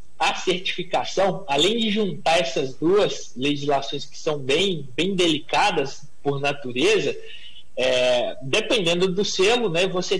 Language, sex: Portuguese, male